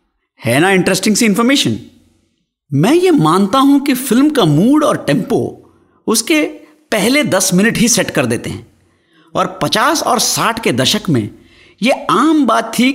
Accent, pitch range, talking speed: native, 165-255 Hz, 160 wpm